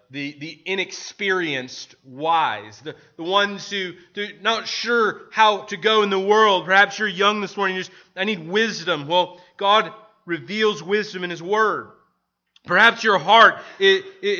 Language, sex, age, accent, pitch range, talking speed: English, male, 30-49, American, 130-200 Hz, 155 wpm